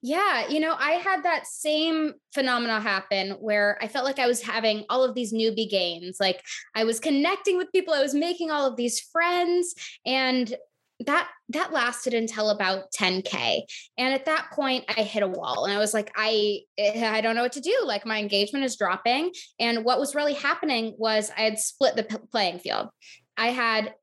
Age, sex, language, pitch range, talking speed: 20-39, female, English, 215-290 Hz, 200 wpm